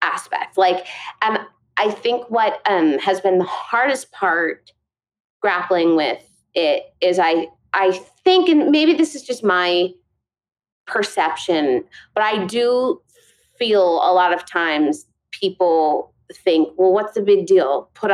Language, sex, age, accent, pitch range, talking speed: English, female, 30-49, American, 180-290 Hz, 140 wpm